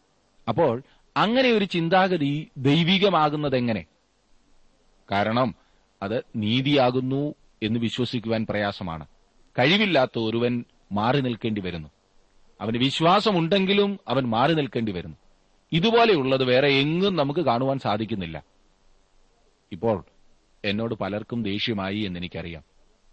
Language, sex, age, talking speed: Malayalam, male, 30-49, 85 wpm